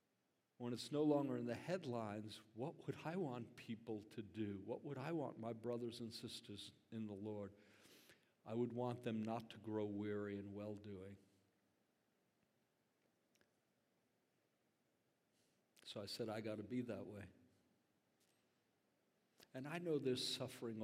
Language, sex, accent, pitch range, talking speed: English, male, American, 105-130 Hz, 140 wpm